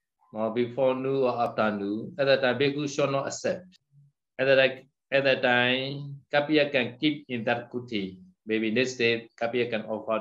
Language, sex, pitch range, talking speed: Vietnamese, male, 115-140 Hz, 170 wpm